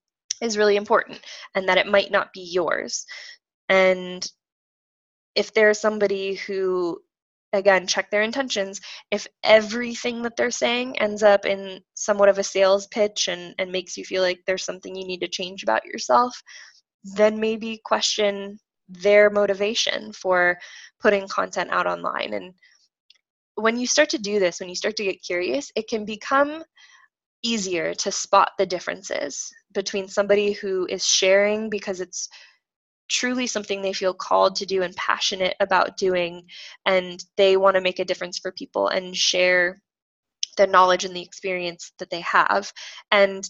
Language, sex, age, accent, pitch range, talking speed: English, female, 10-29, American, 180-210 Hz, 160 wpm